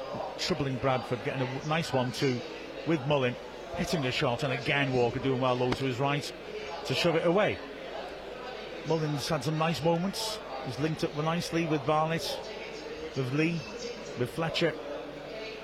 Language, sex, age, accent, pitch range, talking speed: English, male, 40-59, British, 130-155 Hz, 155 wpm